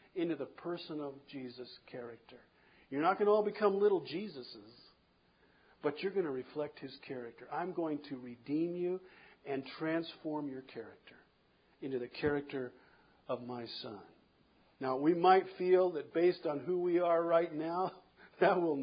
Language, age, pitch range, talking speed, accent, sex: English, 50-69, 140-195 Hz, 160 wpm, American, male